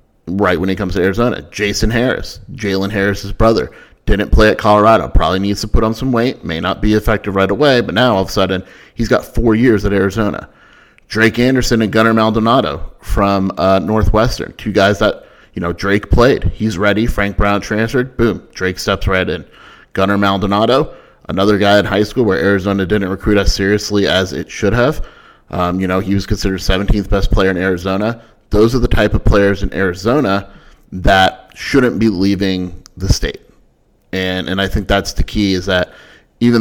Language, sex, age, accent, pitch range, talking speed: English, male, 30-49, American, 95-105 Hz, 190 wpm